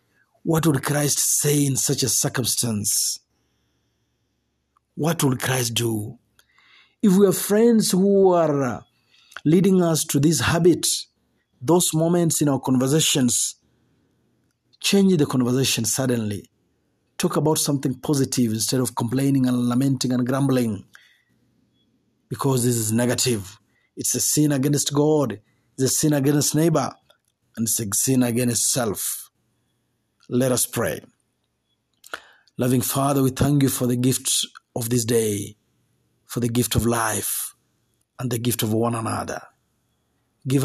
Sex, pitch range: male, 120-140 Hz